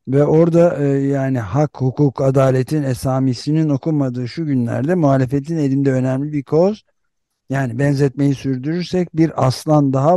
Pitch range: 120-150 Hz